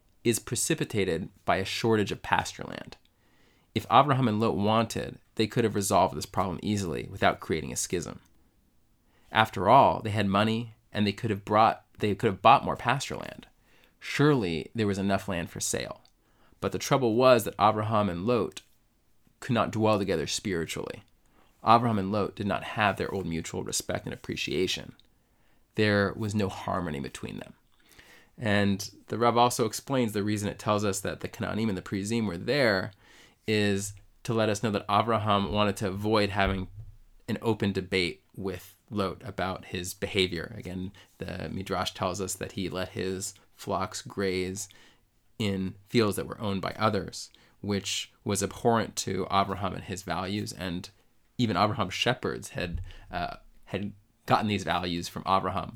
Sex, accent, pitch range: male, American, 95-110 Hz